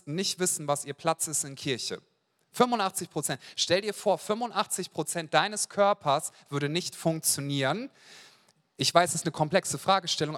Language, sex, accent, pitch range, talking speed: German, male, German, 150-190 Hz, 155 wpm